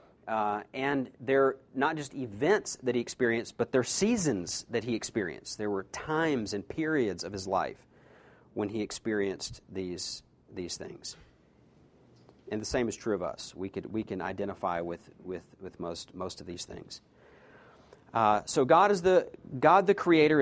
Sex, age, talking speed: male, 40-59, 170 wpm